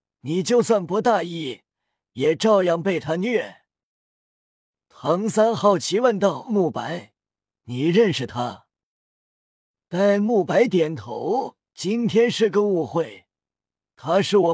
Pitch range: 155-215 Hz